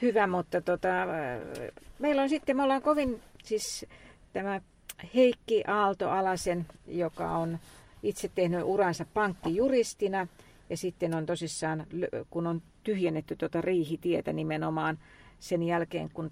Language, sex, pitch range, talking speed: Finnish, female, 165-215 Hz, 120 wpm